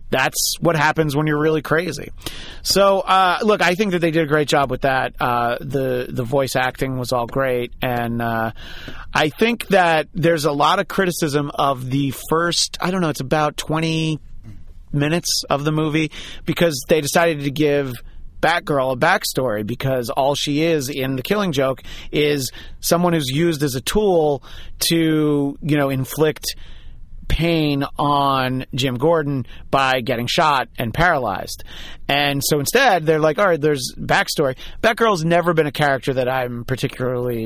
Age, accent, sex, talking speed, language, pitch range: 30-49, American, male, 165 wpm, English, 130-160 Hz